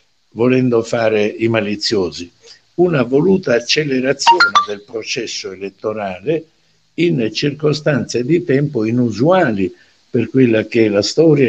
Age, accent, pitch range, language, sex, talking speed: 60-79, native, 100-130 Hz, Italian, male, 110 wpm